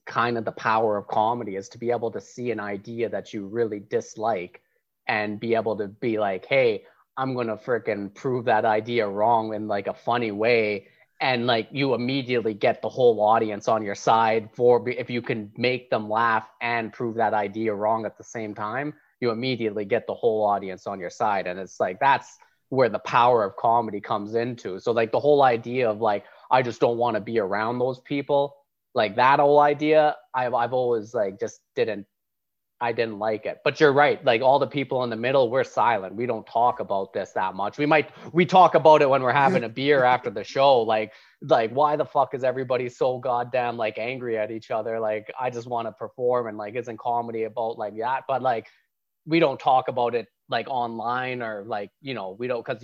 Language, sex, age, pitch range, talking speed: English, male, 30-49, 110-130 Hz, 215 wpm